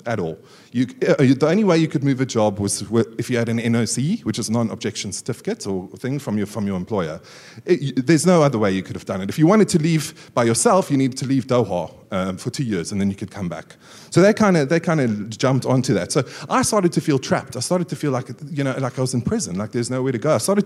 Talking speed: 270 wpm